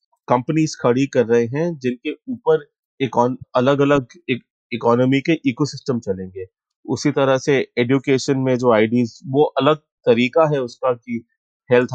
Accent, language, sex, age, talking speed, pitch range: native, Hindi, male, 30-49, 140 wpm, 125-155 Hz